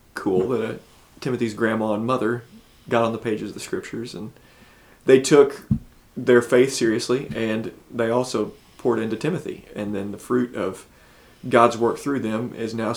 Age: 30-49